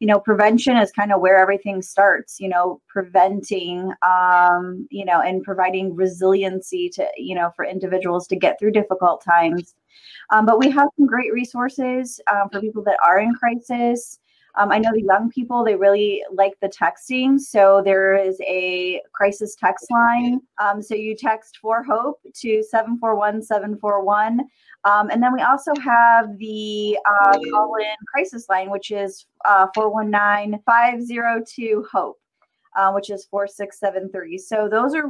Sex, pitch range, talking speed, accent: female, 195-230 Hz, 155 wpm, American